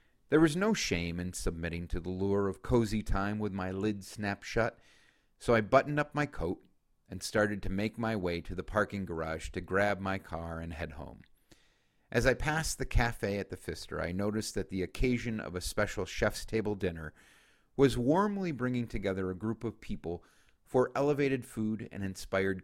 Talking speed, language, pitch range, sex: 190 wpm, English, 90-120 Hz, male